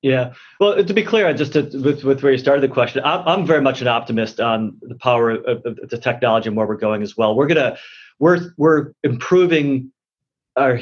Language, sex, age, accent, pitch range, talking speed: English, male, 30-49, American, 110-135 Hz, 210 wpm